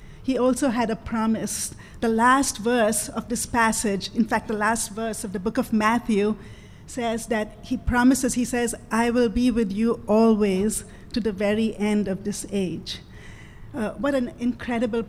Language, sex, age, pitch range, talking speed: English, female, 50-69, 215-250 Hz, 175 wpm